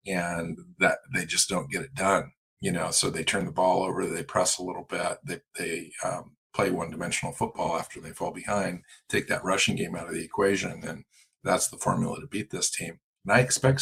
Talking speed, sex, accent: 215 wpm, male, American